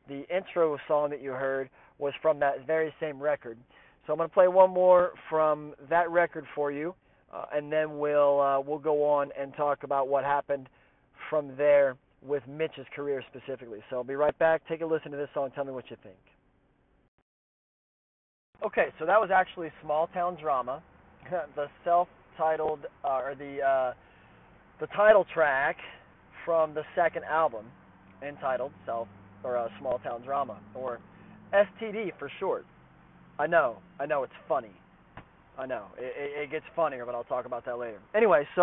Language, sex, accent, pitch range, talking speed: English, male, American, 140-165 Hz, 170 wpm